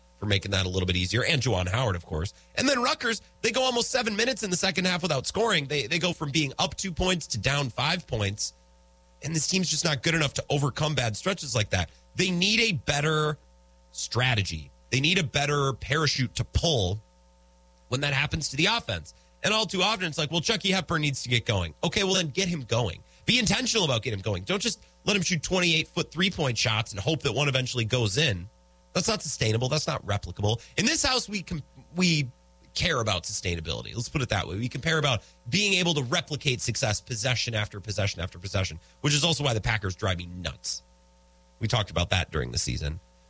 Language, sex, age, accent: English, male, 30-49, American